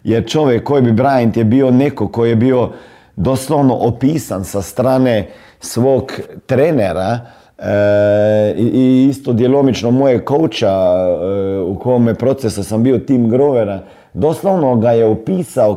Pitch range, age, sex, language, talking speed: 110-145 Hz, 50-69, male, Croatian, 135 wpm